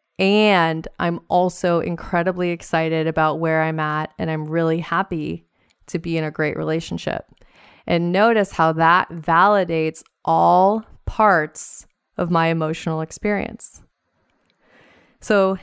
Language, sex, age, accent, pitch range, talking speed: English, female, 20-39, American, 165-200 Hz, 120 wpm